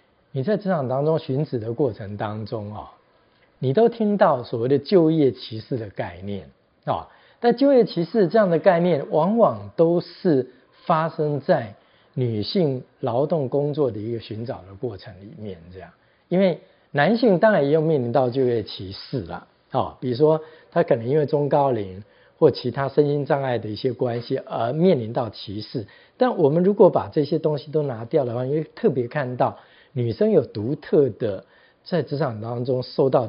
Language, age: Chinese, 50-69